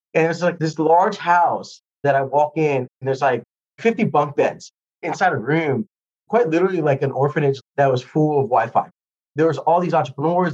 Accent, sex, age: American, male, 30-49